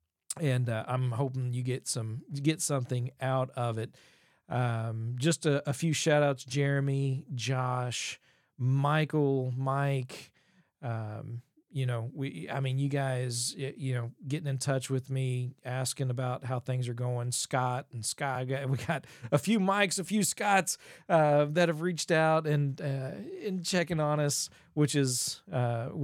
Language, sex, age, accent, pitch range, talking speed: English, male, 40-59, American, 125-160 Hz, 160 wpm